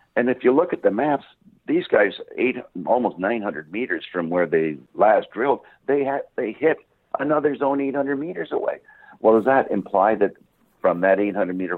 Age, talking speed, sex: 60-79, 180 wpm, male